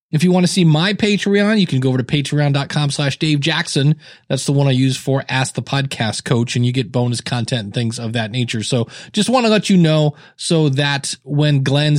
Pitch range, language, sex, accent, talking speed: 135-170 Hz, English, male, American, 235 wpm